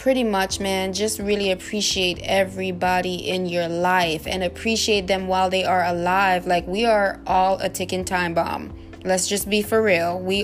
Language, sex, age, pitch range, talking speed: English, female, 20-39, 185-215 Hz, 180 wpm